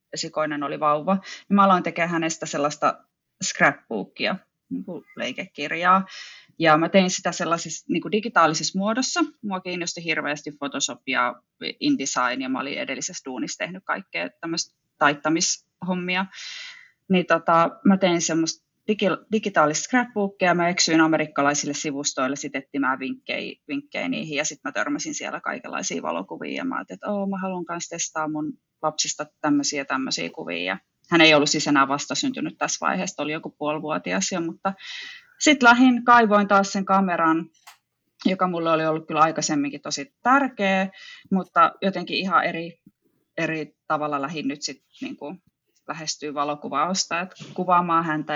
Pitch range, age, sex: 155-195 Hz, 30-49, female